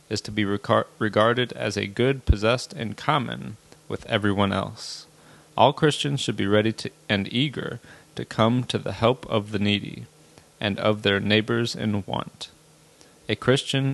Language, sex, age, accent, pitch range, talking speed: English, male, 30-49, American, 105-120 Hz, 155 wpm